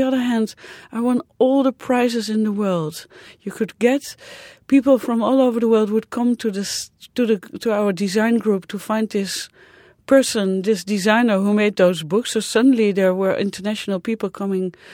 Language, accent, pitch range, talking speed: English, Dutch, 180-220 Hz, 195 wpm